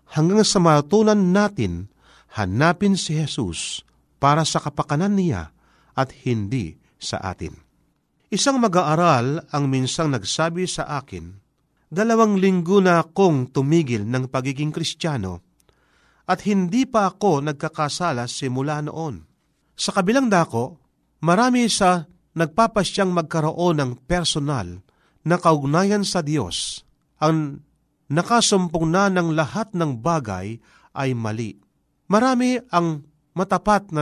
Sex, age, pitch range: male, 40-59, 130-185 Hz